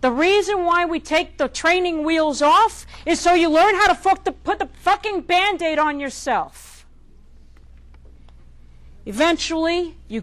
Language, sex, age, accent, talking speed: English, female, 50-69, American, 135 wpm